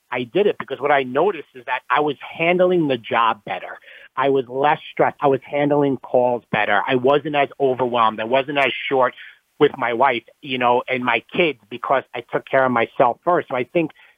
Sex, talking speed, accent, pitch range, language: male, 210 wpm, American, 120-150 Hz, English